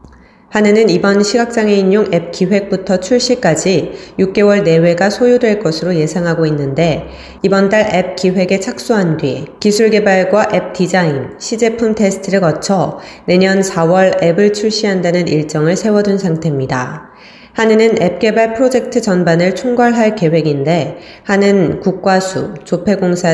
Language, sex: Korean, female